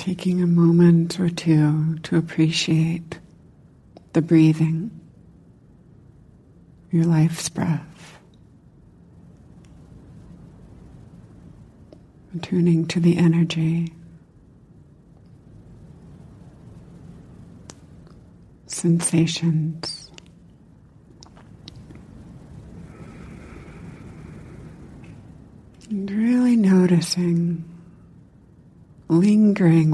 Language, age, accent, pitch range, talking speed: English, 60-79, American, 160-175 Hz, 40 wpm